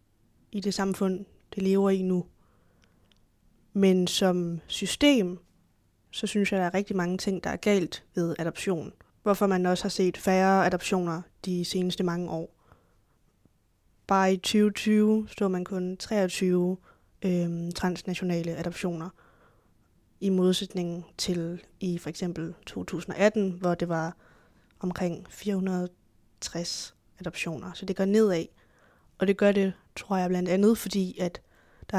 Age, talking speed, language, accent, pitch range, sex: 20-39, 135 wpm, Danish, native, 170-195 Hz, female